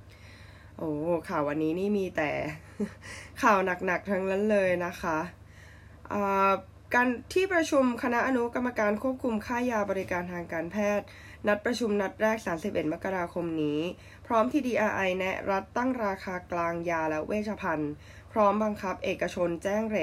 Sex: female